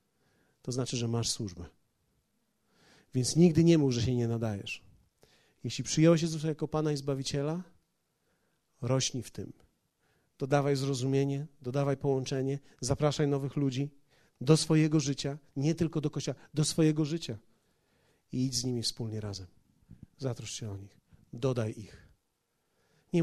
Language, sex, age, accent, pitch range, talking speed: Polish, male, 40-59, native, 120-150 Hz, 135 wpm